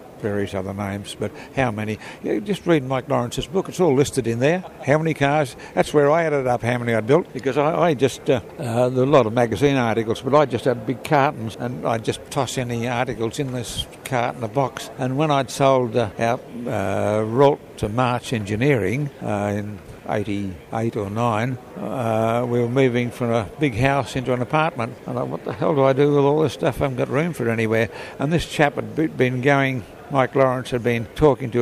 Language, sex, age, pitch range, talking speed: English, male, 60-79, 115-140 Hz, 220 wpm